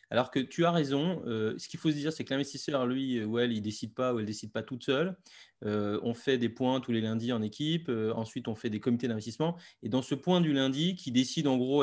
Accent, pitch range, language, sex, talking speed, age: French, 115-150 Hz, French, male, 285 wpm, 20-39